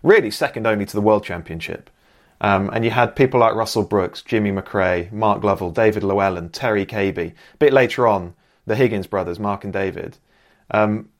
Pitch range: 100-135 Hz